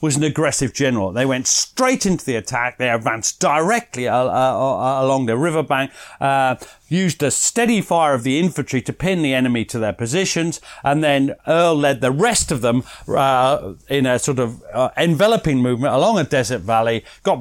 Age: 40-59